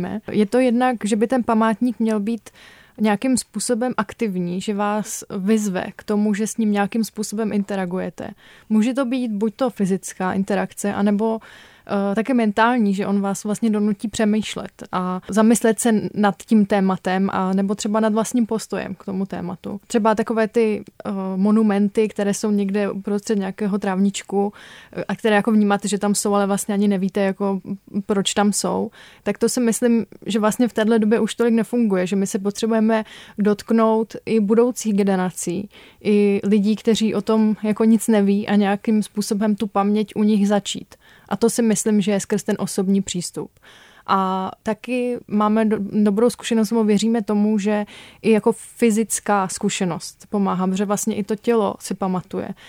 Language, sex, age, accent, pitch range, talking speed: Czech, female, 20-39, native, 200-225 Hz, 165 wpm